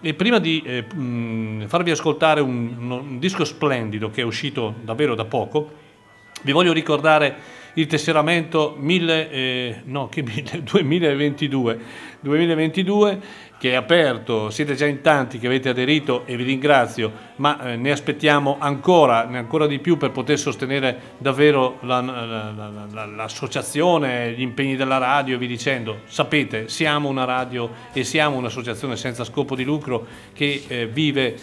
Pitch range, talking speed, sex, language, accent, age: 120-150 Hz, 145 wpm, male, Italian, native, 40-59